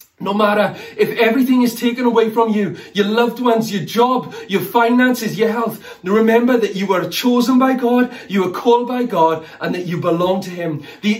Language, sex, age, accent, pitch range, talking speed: English, male, 30-49, British, 170-225 Hz, 200 wpm